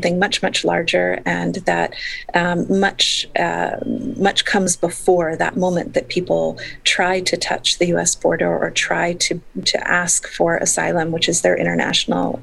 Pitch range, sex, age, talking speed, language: 170-190 Hz, female, 30-49, 150 wpm, English